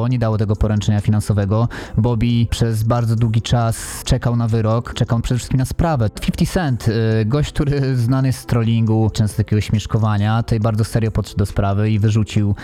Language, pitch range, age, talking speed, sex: Polish, 105-125 Hz, 20-39, 180 wpm, male